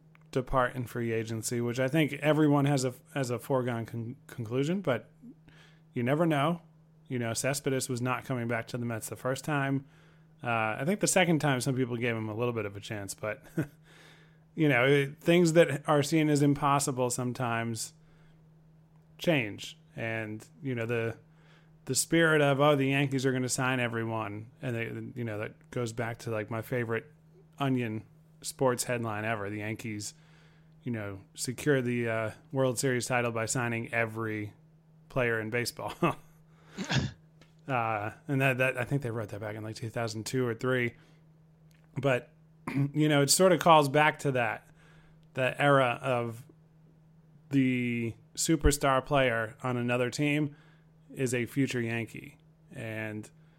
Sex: male